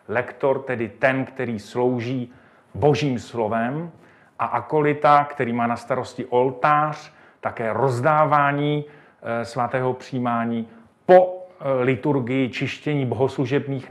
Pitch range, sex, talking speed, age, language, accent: 120-155 Hz, male, 95 wpm, 40-59, Czech, native